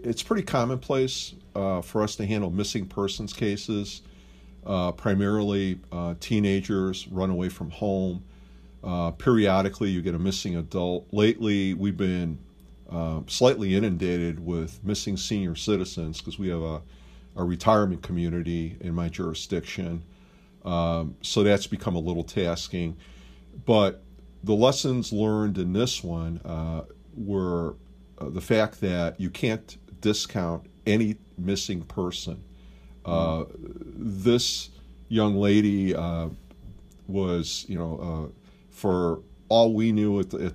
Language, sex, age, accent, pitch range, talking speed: English, male, 50-69, American, 85-100 Hz, 130 wpm